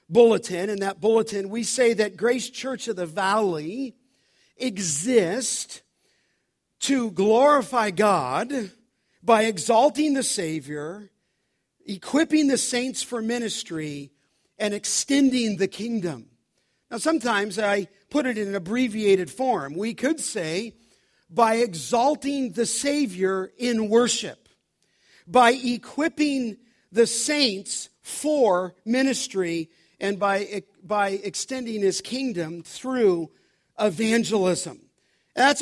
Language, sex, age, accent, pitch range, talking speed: English, male, 50-69, American, 190-255 Hz, 105 wpm